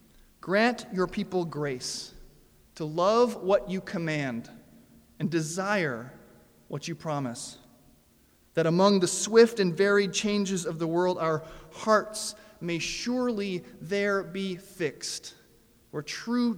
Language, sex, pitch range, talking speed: English, male, 155-210 Hz, 120 wpm